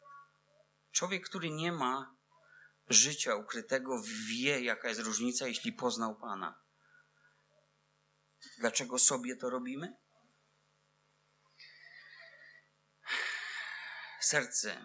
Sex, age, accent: male, 30-49, native